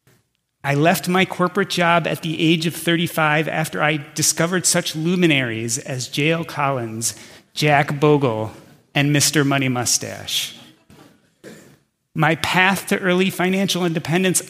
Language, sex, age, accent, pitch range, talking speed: English, male, 30-49, American, 140-175 Hz, 125 wpm